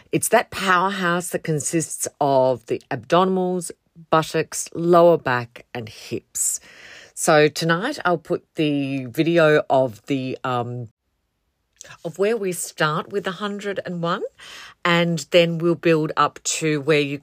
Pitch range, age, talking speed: 150-205 Hz, 40-59, 125 wpm